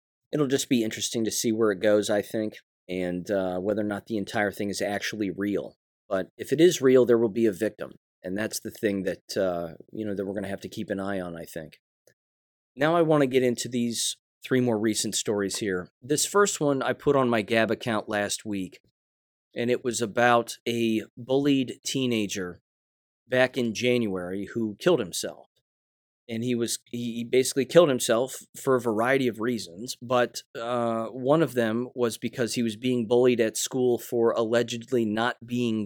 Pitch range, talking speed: 100-125 Hz, 190 wpm